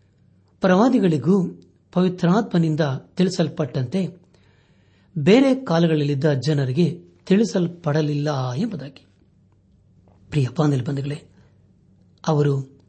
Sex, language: male, Kannada